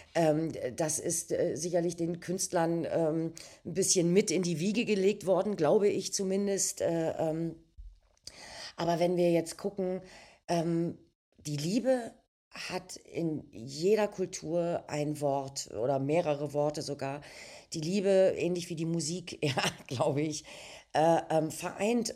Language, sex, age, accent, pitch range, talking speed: German, female, 40-59, German, 160-190 Hz, 115 wpm